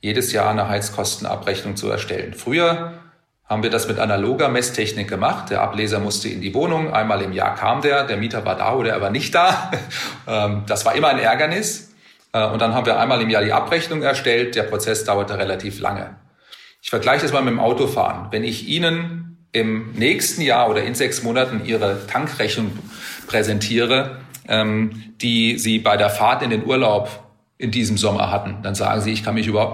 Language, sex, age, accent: German, male, 40-59, German